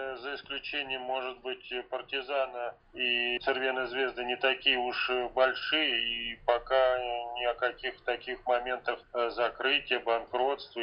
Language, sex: Russian, male